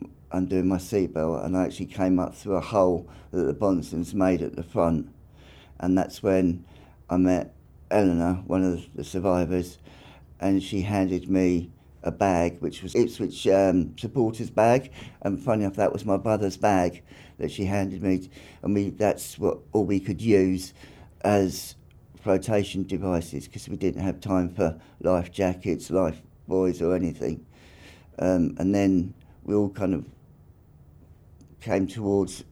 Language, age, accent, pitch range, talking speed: English, 50-69, British, 90-100 Hz, 155 wpm